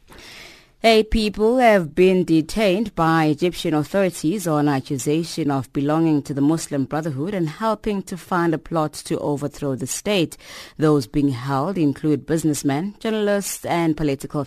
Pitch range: 145-175 Hz